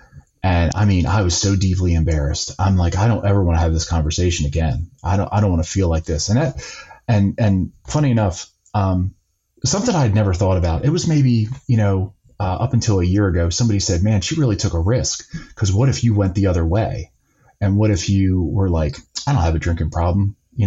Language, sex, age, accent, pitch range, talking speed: English, male, 30-49, American, 90-115 Hz, 230 wpm